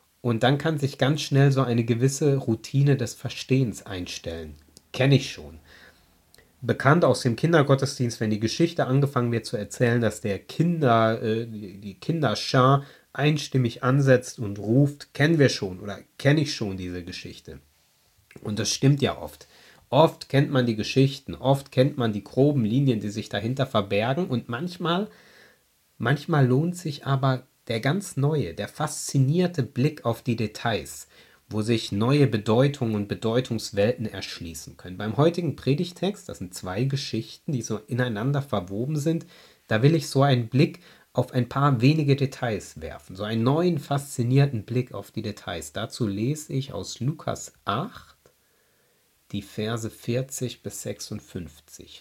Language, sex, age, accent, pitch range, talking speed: German, male, 30-49, German, 105-140 Hz, 150 wpm